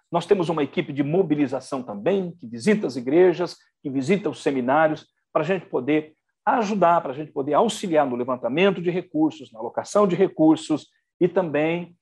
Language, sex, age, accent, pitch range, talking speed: Portuguese, male, 60-79, Brazilian, 140-205 Hz, 175 wpm